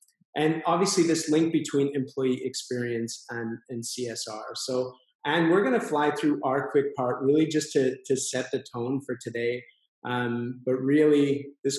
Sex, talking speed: male, 170 wpm